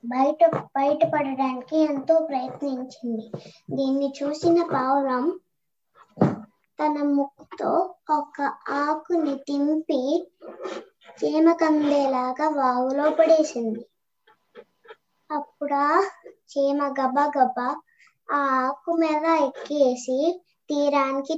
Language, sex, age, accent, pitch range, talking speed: Telugu, male, 20-39, native, 275-320 Hz, 70 wpm